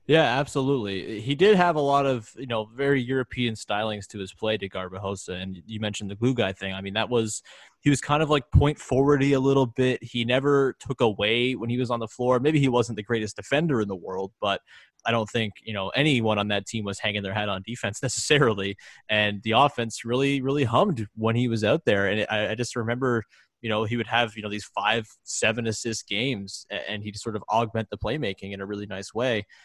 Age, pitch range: 20-39, 105-135 Hz